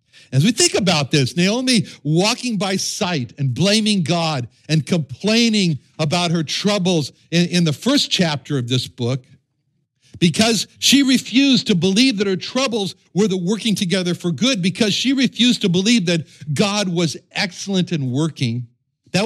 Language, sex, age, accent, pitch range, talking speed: English, male, 60-79, American, 150-210 Hz, 160 wpm